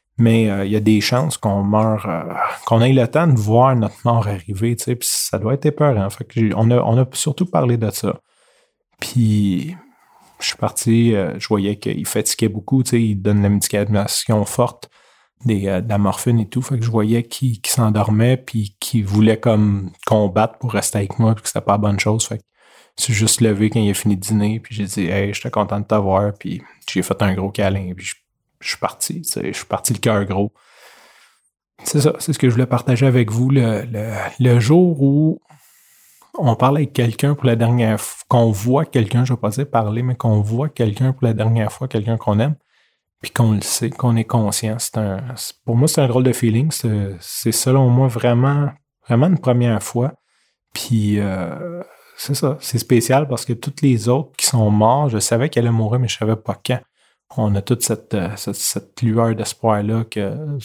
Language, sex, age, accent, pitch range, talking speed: French, male, 30-49, Canadian, 105-125 Hz, 220 wpm